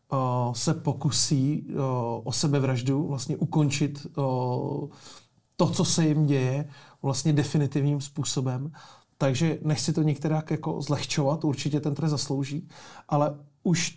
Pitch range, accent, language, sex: 140-160 Hz, native, Czech, male